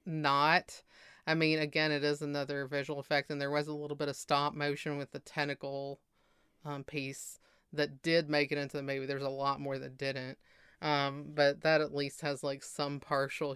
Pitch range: 140-155 Hz